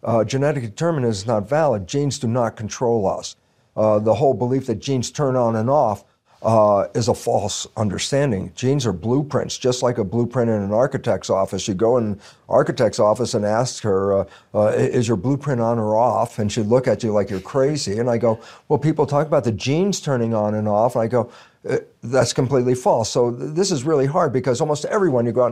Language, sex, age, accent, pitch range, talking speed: English, male, 50-69, American, 110-135 Hz, 215 wpm